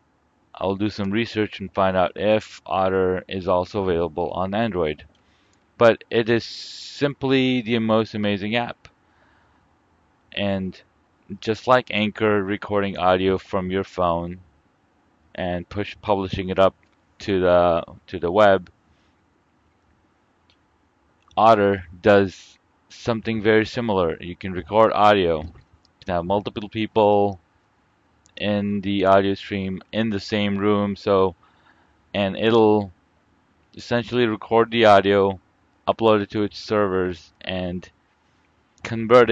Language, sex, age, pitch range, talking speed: English, male, 30-49, 95-110 Hz, 115 wpm